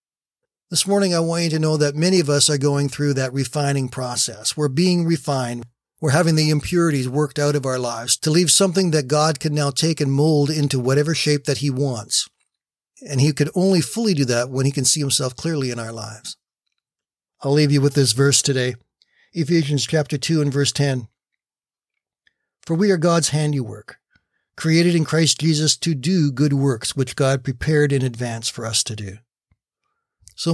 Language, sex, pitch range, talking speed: English, male, 125-155 Hz, 190 wpm